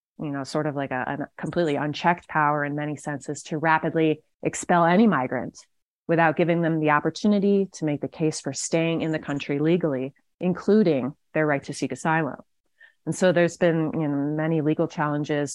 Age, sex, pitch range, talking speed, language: 30-49, female, 145-170 Hz, 180 wpm, English